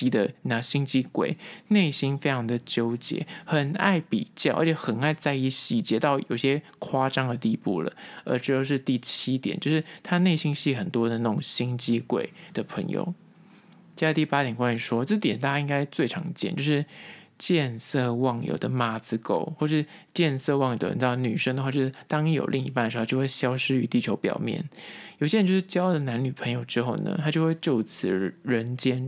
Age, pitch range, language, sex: 20-39, 125-160 Hz, Chinese, male